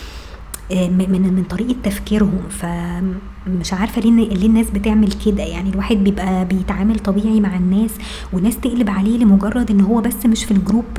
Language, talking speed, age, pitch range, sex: Arabic, 145 wpm, 20-39, 185-220 Hz, male